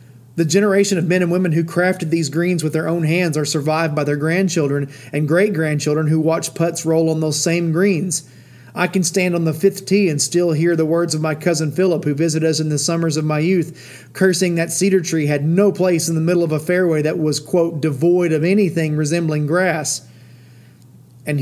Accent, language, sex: American, English, male